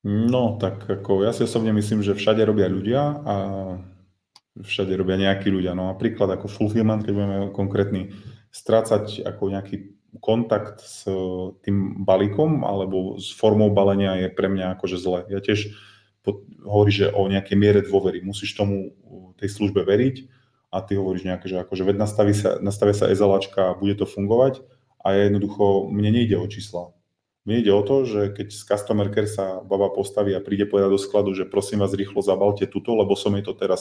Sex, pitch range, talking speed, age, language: male, 95-105 Hz, 175 wpm, 20-39, Slovak